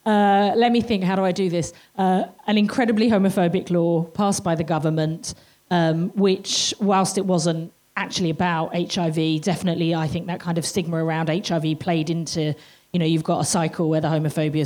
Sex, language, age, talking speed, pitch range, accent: female, English, 30-49, 190 wpm, 160-190 Hz, British